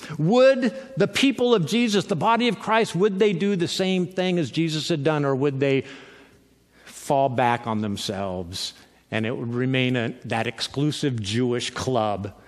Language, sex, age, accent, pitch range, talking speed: English, male, 50-69, American, 135-225 Hz, 170 wpm